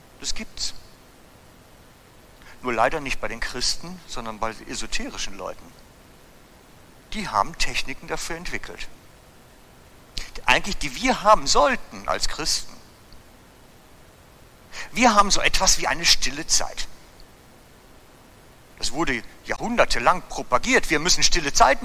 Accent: German